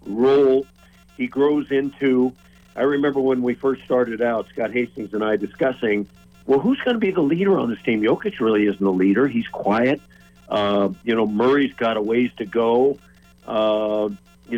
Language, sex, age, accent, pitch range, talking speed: English, male, 50-69, American, 105-130 Hz, 180 wpm